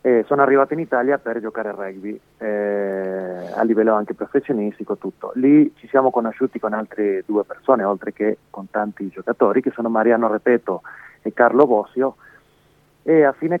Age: 30-49